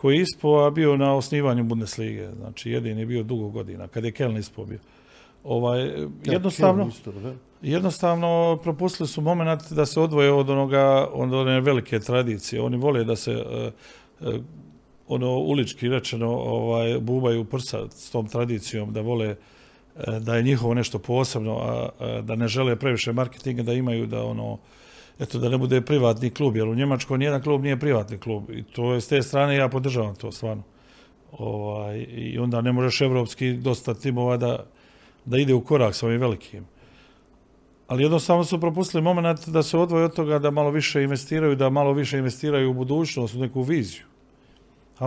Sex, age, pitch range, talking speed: male, 50-69, 115-140 Hz, 170 wpm